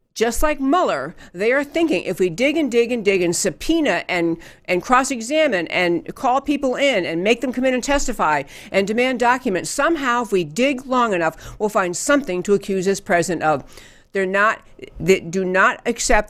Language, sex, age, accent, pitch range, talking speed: English, female, 60-79, American, 180-245 Hz, 195 wpm